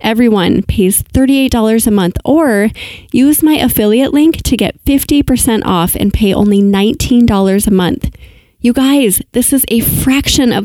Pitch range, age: 200-245 Hz, 20-39